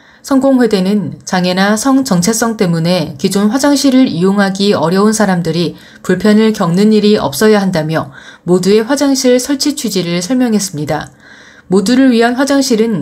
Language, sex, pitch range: Korean, female, 180-250 Hz